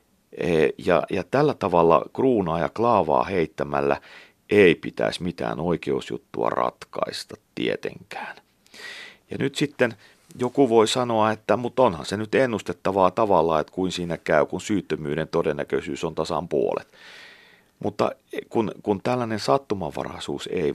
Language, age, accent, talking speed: Finnish, 40-59, native, 125 wpm